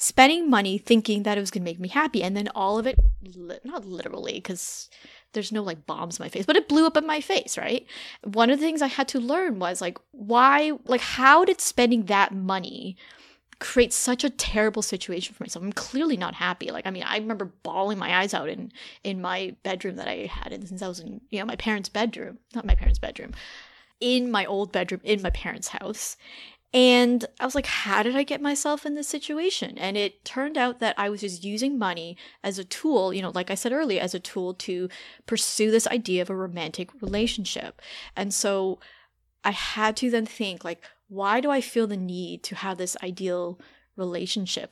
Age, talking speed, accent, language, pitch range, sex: 20-39, 215 wpm, American, English, 190-245 Hz, female